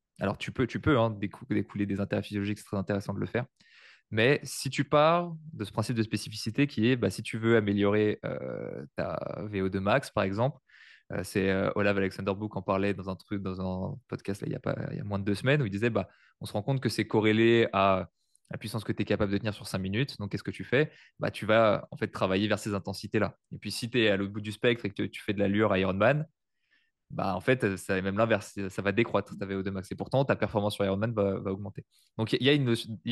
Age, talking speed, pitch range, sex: 20-39, 255 wpm, 100-120 Hz, male